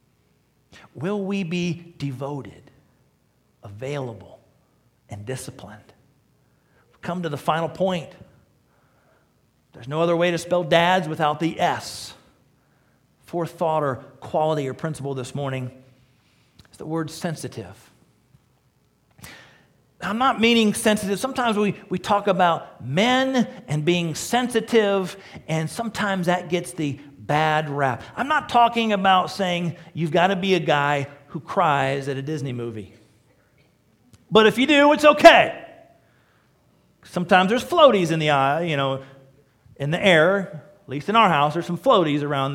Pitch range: 135-195 Hz